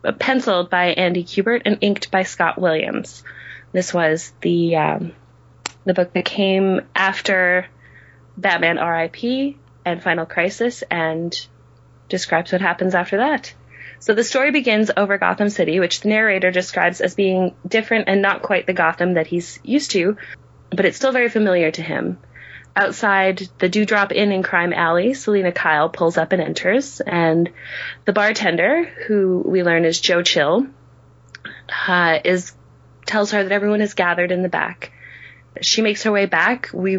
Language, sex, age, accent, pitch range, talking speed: English, female, 20-39, American, 170-205 Hz, 160 wpm